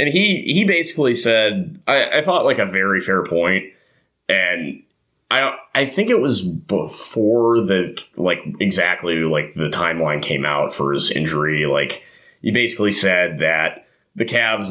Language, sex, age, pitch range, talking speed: English, male, 30-49, 90-115 Hz, 155 wpm